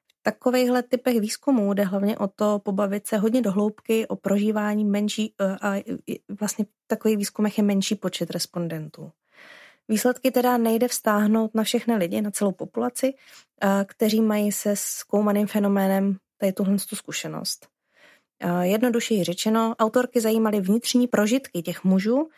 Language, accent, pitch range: Czech, native, 190-225 Hz